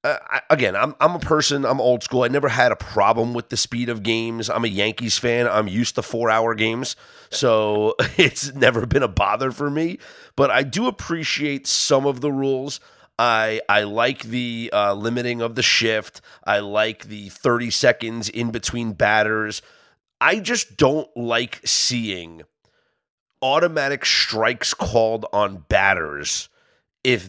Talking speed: 160 wpm